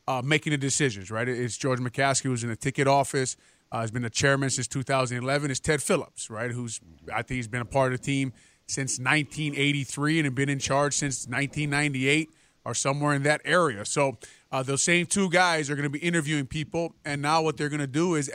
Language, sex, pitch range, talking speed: English, male, 135-160 Hz, 220 wpm